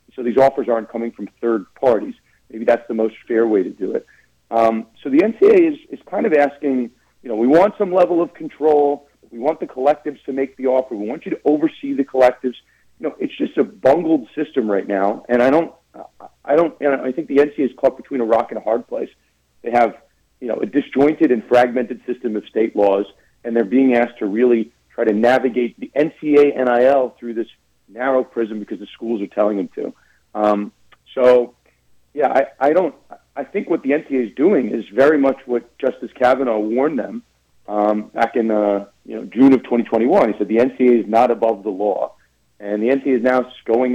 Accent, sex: American, male